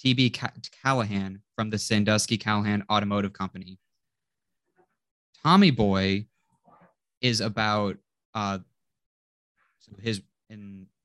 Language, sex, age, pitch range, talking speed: English, male, 20-39, 100-115 Hz, 85 wpm